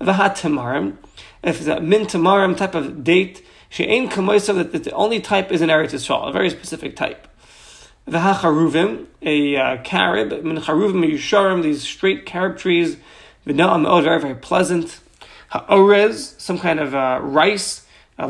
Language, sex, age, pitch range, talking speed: English, male, 30-49, 150-190 Hz, 140 wpm